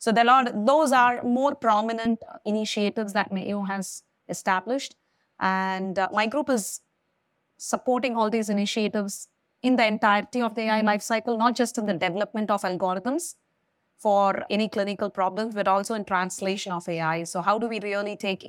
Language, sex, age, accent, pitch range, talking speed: English, female, 20-39, Indian, 190-230 Hz, 160 wpm